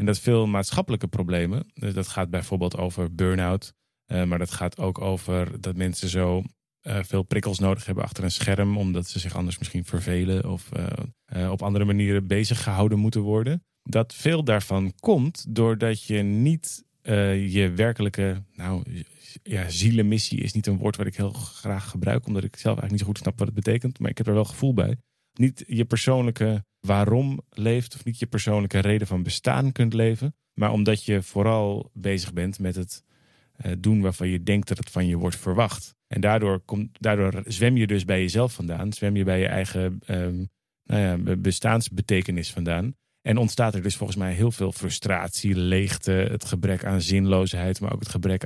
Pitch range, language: 95-110 Hz, Dutch